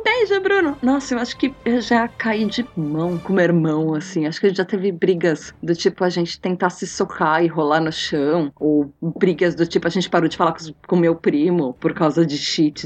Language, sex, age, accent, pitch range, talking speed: Portuguese, female, 20-39, Brazilian, 165-240 Hz, 235 wpm